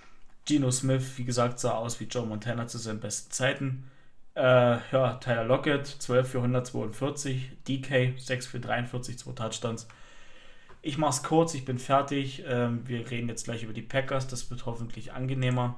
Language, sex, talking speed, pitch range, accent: German, male, 170 wpm, 125-150 Hz, German